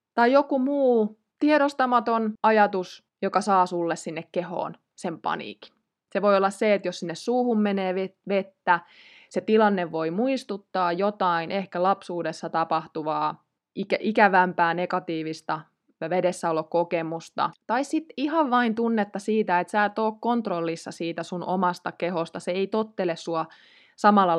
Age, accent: 20-39, native